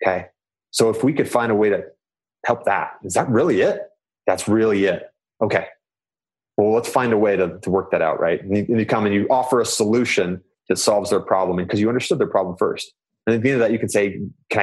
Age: 30-49